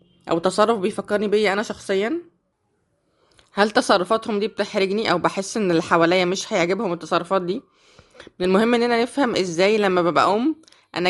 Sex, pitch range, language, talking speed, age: female, 190-230 Hz, Arabic, 145 wpm, 20-39